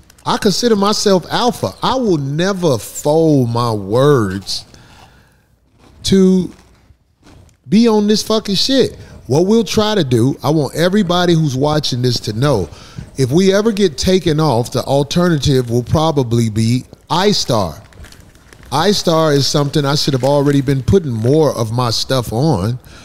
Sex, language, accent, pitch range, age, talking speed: male, English, American, 115-175 Hz, 30-49, 145 wpm